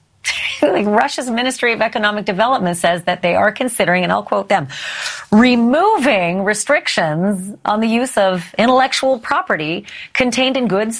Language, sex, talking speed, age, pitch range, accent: English, female, 135 wpm, 40-59, 165-225 Hz, American